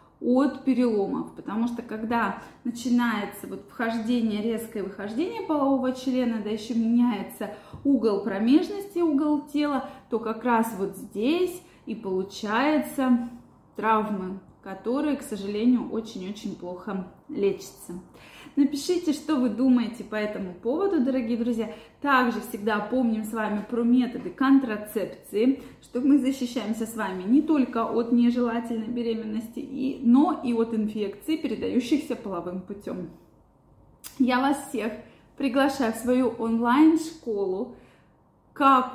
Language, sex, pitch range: Russian, female, 210-260 Hz